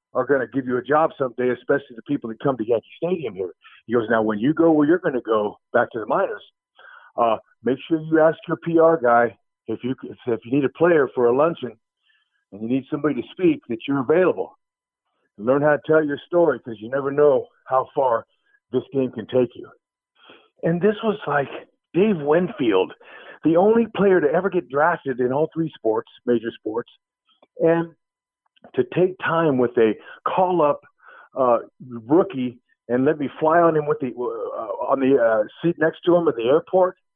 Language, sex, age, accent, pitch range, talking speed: English, male, 50-69, American, 135-180 Hz, 200 wpm